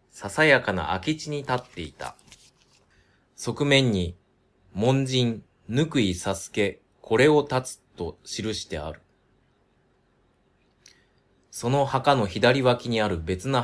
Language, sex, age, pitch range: Japanese, male, 20-39, 95-125 Hz